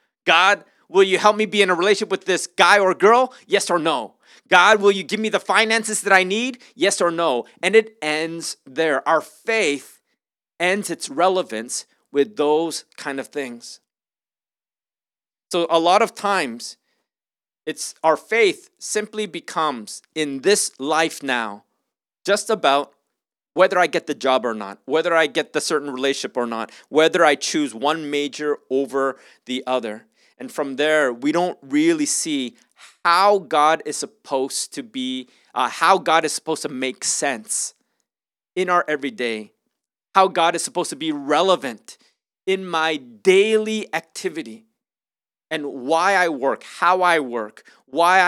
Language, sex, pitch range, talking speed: English, male, 150-215 Hz, 155 wpm